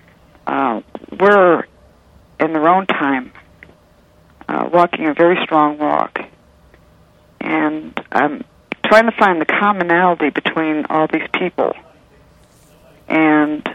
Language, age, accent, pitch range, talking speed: English, 50-69, American, 150-180 Hz, 105 wpm